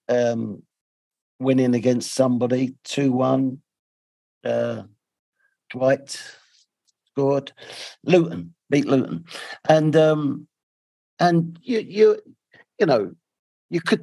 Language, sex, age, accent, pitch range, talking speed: English, male, 50-69, British, 140-185 Hz, 85 wpm